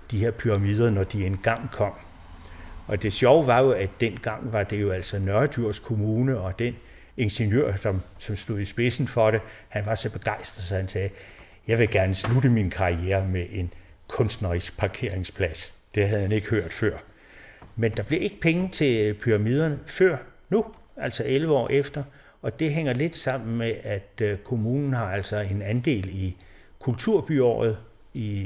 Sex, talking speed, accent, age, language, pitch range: male, 170 wpm, native, 60-79, Danish, 100-130 Hz